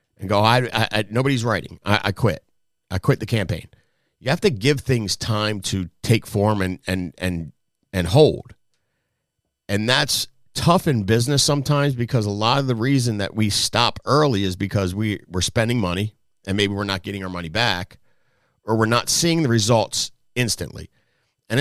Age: 50-69